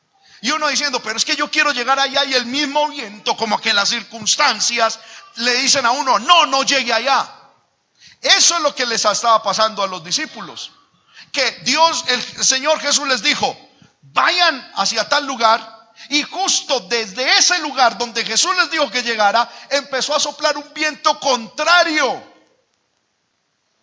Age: 50-69